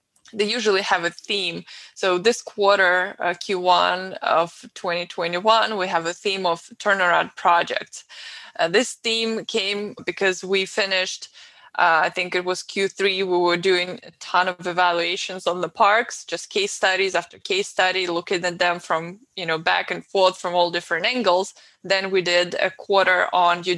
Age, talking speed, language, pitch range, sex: 20-39, 170 wpm, English, 175-210 Hz, female